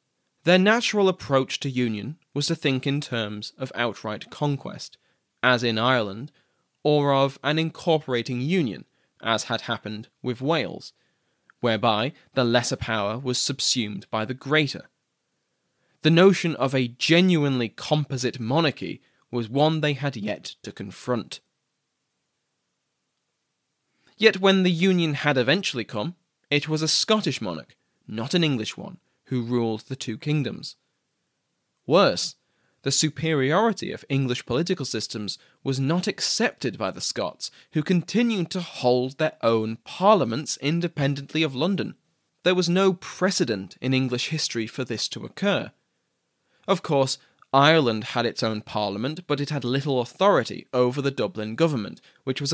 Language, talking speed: English, 140 wpm